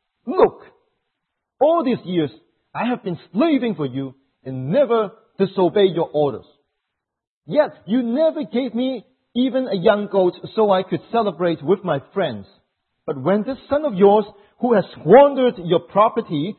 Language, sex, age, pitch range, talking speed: English, male, 40-59, 175-245 Hz, 150 wpm